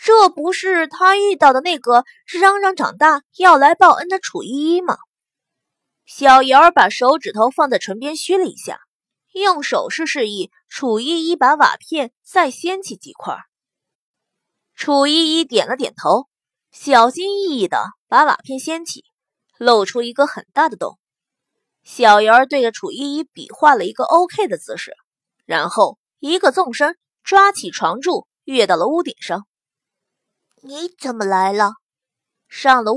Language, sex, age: Chinese, female, 20-39